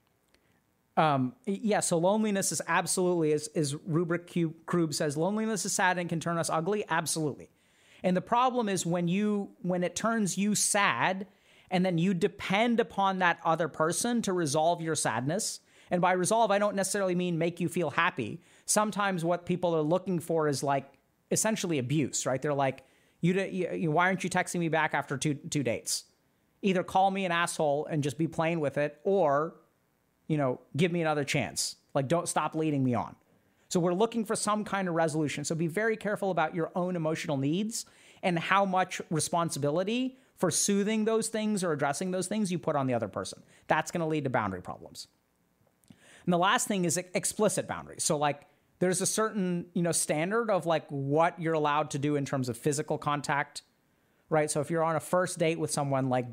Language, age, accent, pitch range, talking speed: English, 40-59, American, 150-190 Hz, 195 wpm